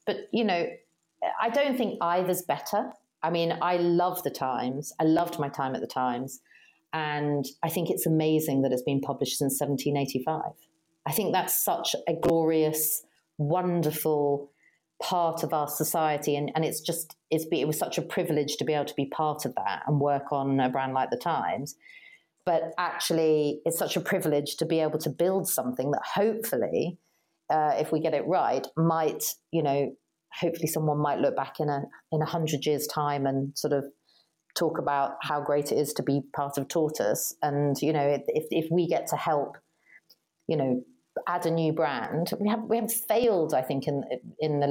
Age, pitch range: 40-59, 140-170 Hz